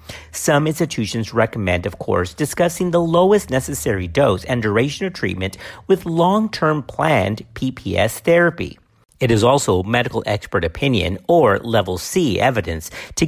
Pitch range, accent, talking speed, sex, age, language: 100-155 Hz, American, 135 wpm, male, 50-69, English